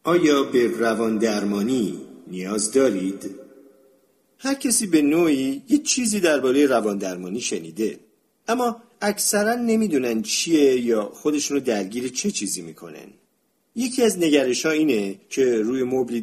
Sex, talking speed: male, 130 wpm